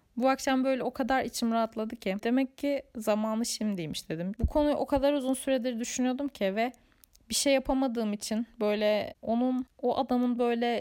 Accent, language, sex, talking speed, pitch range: native, Turkish, female, 170 wpm, 210-260 Hz